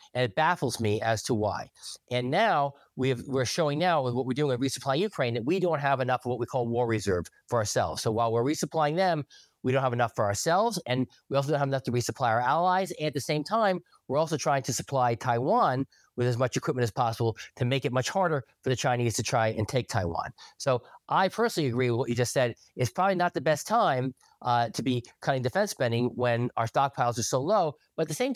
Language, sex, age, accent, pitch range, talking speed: English, male, 40-59, American, 125-160 Hz, 240 wpm